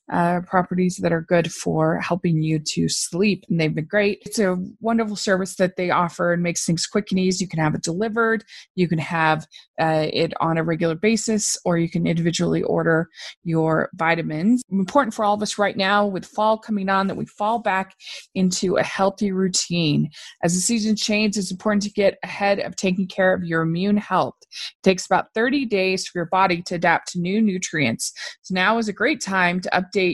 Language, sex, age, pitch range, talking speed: English, female, 20-39, 170-215 Hz, 205 wpm